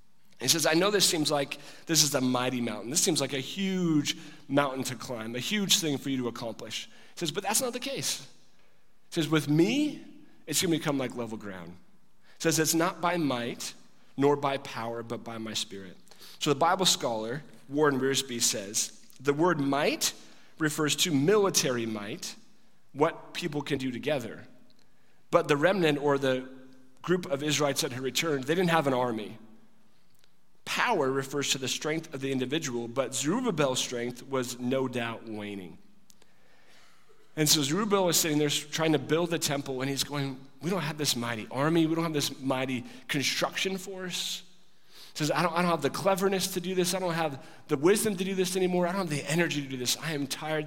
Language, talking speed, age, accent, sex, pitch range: English, 195 wpm, 40-59, American, male, 130-165 Hz